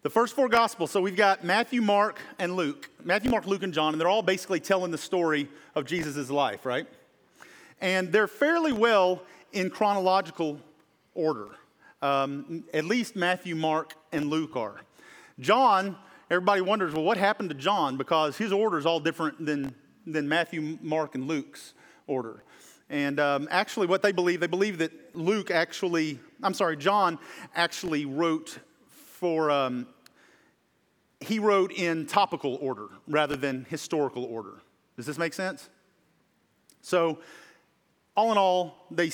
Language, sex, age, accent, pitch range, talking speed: English, male, 40-59, American, 155-205 Hz, 150 wpm